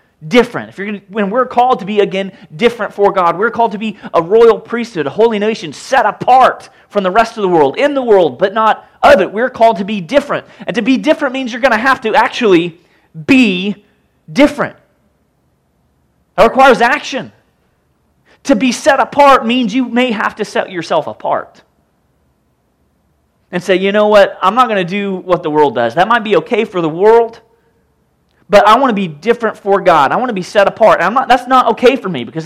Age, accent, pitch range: 30-49, American, 170-230 Hz